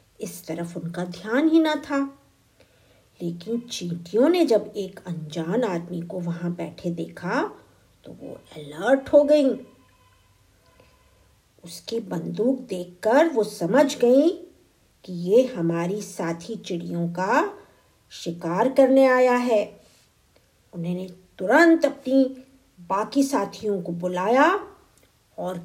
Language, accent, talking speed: Hindi, native, 110 wpm